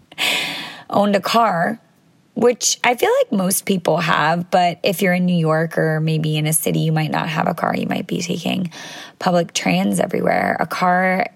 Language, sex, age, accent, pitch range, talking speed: English, female, 20-39, American, 170-210 Hz, 190 wpm